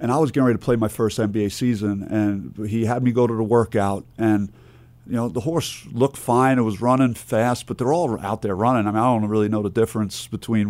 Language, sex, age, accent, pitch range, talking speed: English, male, 50-69, American, 100-120 Hz, 250 wpm